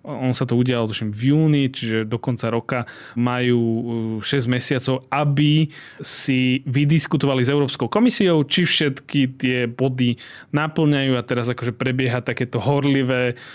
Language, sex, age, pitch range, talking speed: Slovak, male, 20-39, 125-140 Hz, 135 wpm